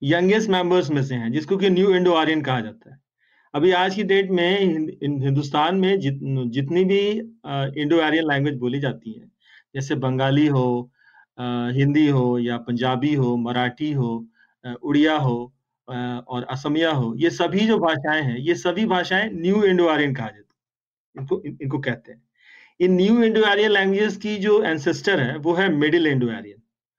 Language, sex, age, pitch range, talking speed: Hindi, male, 40-59, 135-195 Hz, 180 wpm